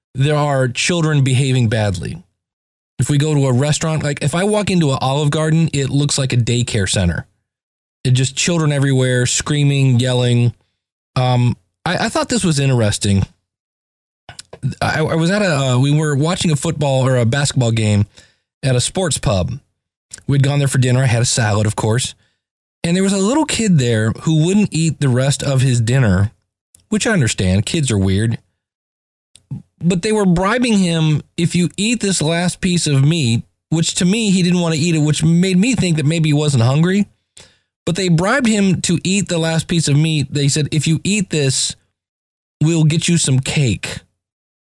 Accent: American